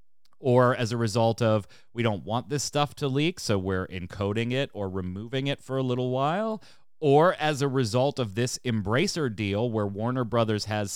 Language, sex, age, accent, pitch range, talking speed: English, male, 30-49, American, 100-130 Hz, 190 wpm